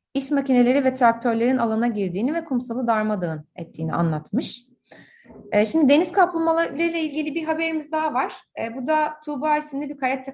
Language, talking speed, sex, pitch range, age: Turkish, 145 wpm, female, 205-305 Hz, 30-49